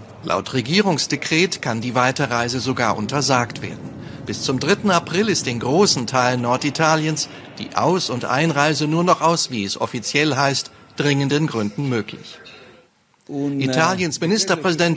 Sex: male